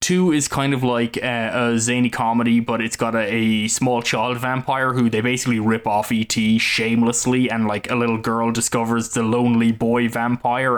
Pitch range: 115-125 Hz